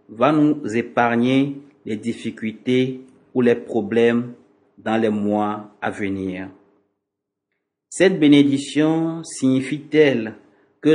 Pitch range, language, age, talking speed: 100-135 Hz, French, 50-69, 95 wpm